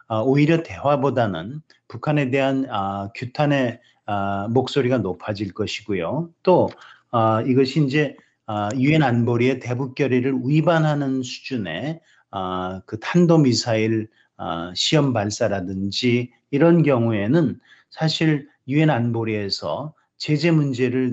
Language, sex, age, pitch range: Korean, male, 40-59, 110-150 Hz